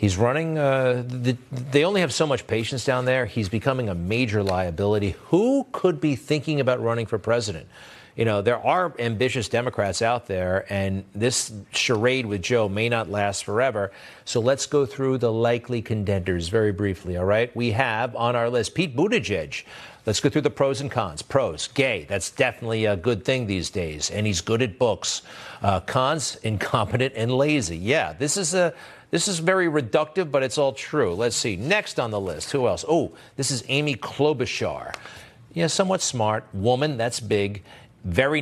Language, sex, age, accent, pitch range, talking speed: English, male, 50-69, American, 105-135 Hz, 185 wpm